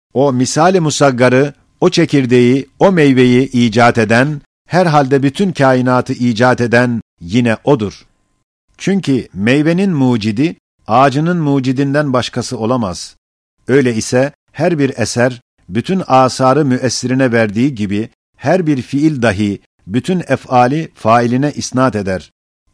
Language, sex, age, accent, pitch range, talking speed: Turkish, male, 50-69, native, 115-140 Hz, 115 wpm